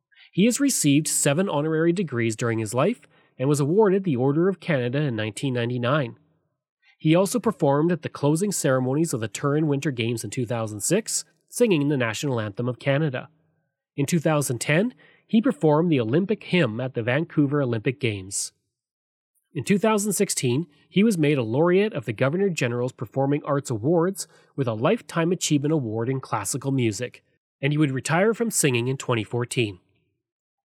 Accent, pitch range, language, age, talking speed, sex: Canadian, 125-175 Hz, English, 30-49, 155 wpm, male